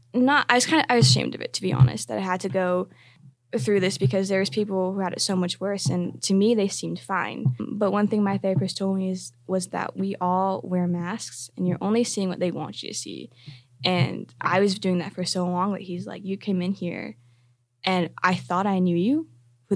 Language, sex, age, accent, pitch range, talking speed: English, female, 10-29, American, 165-195 Hz, 250 wpm